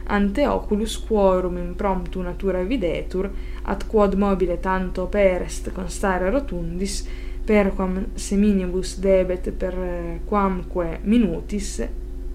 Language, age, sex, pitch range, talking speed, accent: Italian, 20-39, female, 180-215 Hz, 95 wpm, native